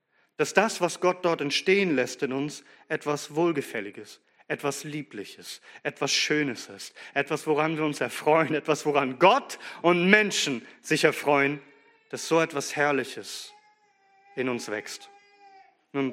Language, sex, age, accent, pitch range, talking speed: German, male, 40-59, German, 150-190 Hz, 135 wpm